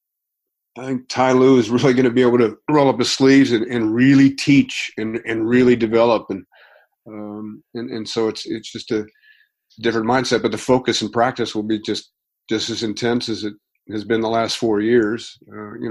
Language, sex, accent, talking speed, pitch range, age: English, male, American, 210 wpm, 110-130 Hz, 40-59